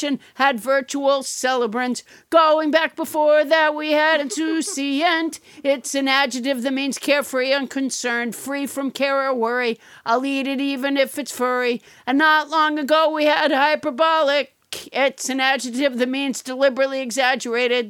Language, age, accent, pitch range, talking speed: English, 50-69, American, 255-295 Hz, 145 wpm